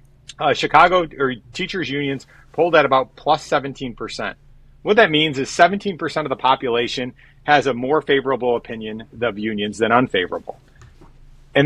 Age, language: 30-49, English